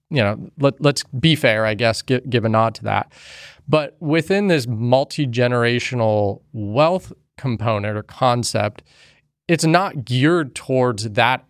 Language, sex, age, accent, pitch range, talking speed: English, male, 30-49, American, 115-135 Hz, 140 wpm